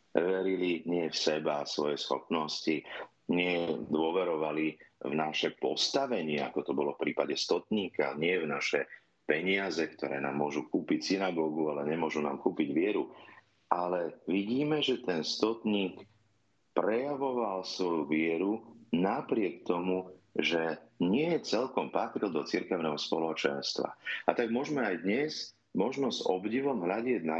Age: 40-59